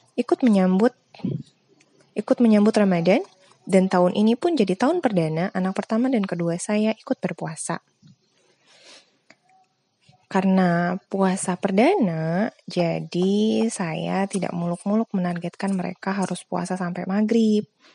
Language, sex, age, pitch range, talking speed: Indonesian, female, 20-39, 175-210 Hz, 105 wpm